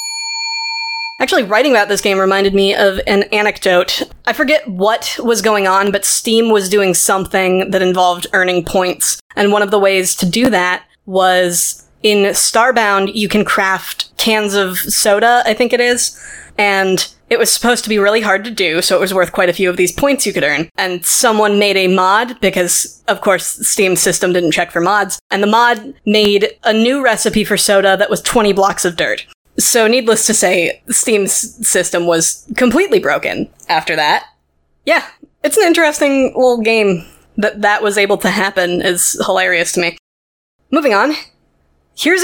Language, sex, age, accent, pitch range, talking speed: English, female, 20-39, American, 190-235 Hz, 180 wpm